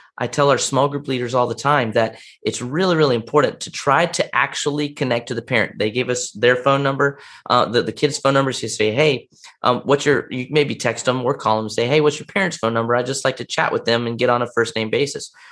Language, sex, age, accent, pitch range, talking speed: English, male, 30-49, American, 115-140 Hz, 270 wpm